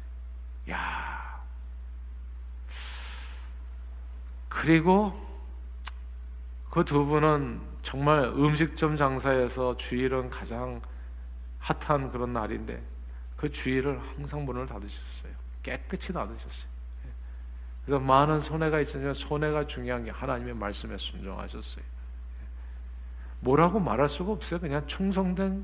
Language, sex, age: Korean, male, 50-69